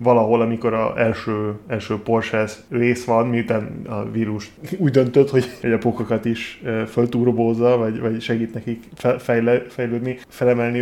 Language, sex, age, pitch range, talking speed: Hungarian, male, 10-29, 110-125 Hz, 140 wpm